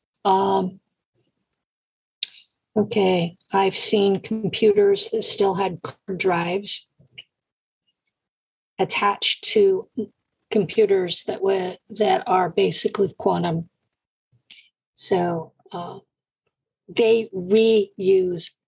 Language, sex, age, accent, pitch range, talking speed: English, female, 50-69, American, 160-215 Hz, 70 wpm